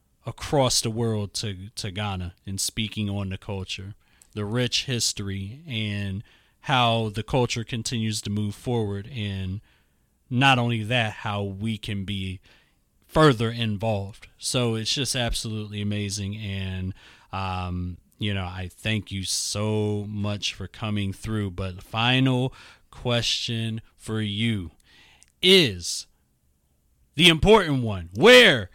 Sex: male